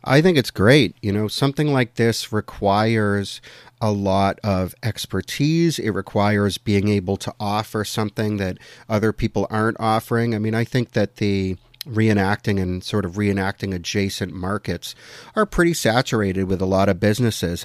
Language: English